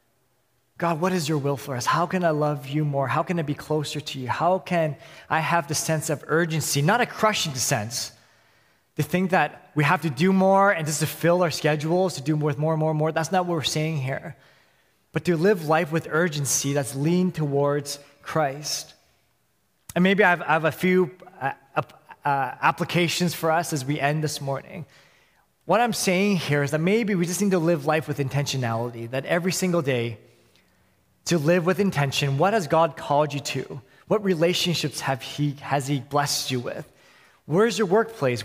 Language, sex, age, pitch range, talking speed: English, male, 20-39, 145-175 Hz, 205 wpm